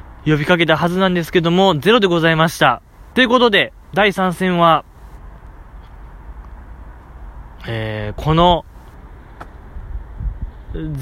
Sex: male